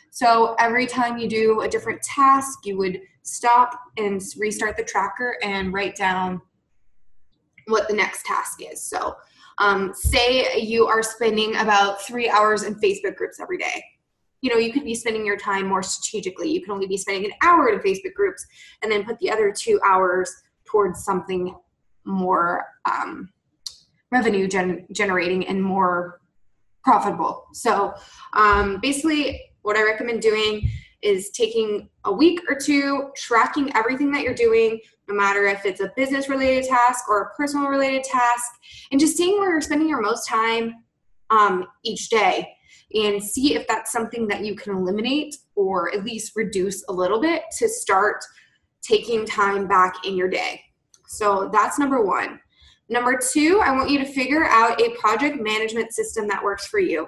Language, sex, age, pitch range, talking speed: English, female, 20-39, 200-275 Hz, 165 wpm